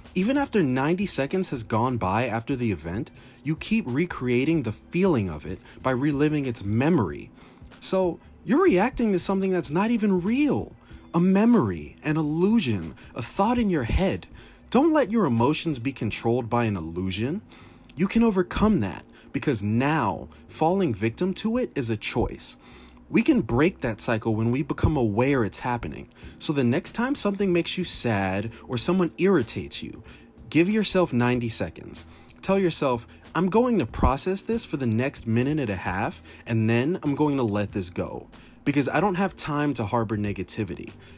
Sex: male